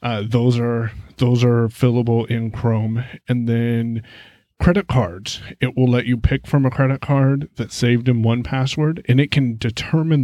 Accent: American